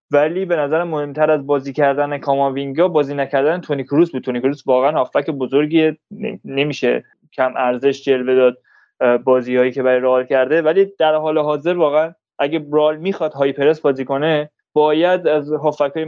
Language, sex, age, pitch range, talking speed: Persian, male, 20-39, 135-165 Hz, 160 wpm